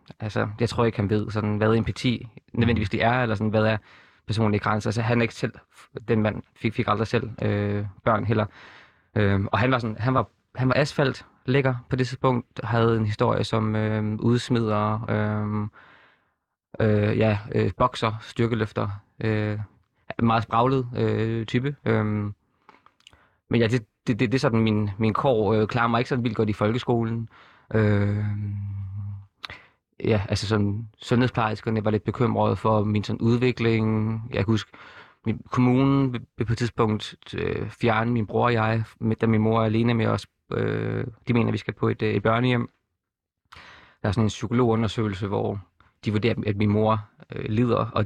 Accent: native